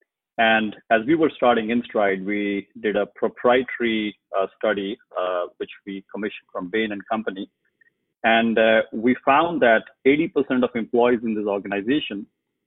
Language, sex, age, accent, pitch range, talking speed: English, male, 30-49, Indian, 105-130 Hz, 145 wpm